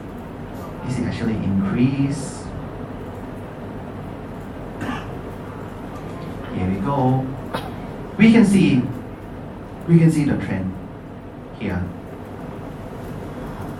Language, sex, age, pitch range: Thai, male, 30-49, 100-140 Hz